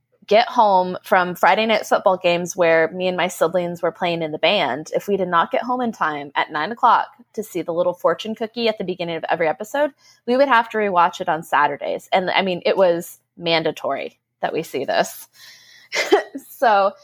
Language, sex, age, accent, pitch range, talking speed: English, female, 20-39, American, 170-225 Hz, 210 wpm